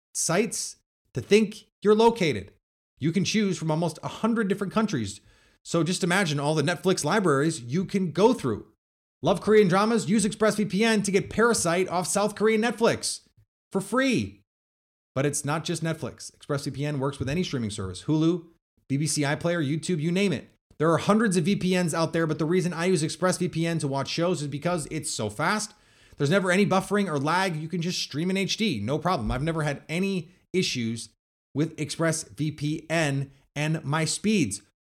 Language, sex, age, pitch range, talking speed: English, male, 30-49, 135-185 Hz, 175 wpm